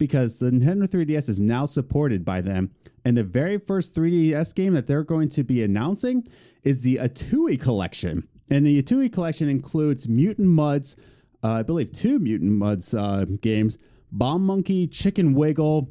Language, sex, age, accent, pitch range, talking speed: English, male, 30-49, American, 115-150 Hz, 165 wpm